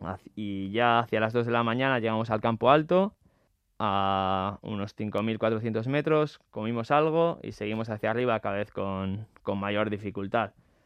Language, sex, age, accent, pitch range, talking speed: Spanish, male, 20-39, Spanish, 105-125 Hz, 155 wpm